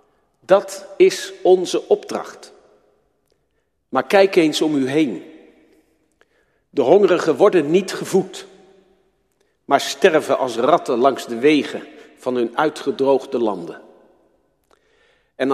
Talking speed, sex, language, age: 105 wpm, male, Dutch, 50-69